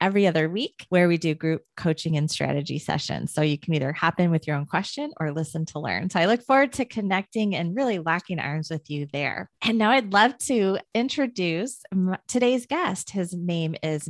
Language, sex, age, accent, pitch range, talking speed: English, female, 30-49, American, 160-205 Hz, 210 wpm